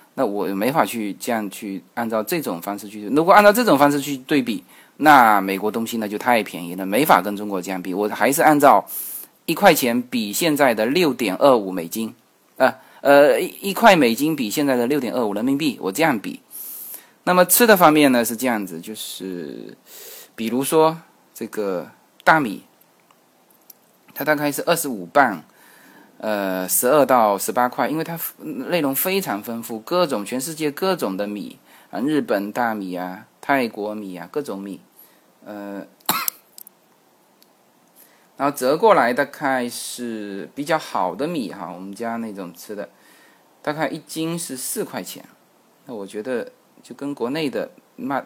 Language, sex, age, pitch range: Chinese, male, 20-39, 105-155 Hz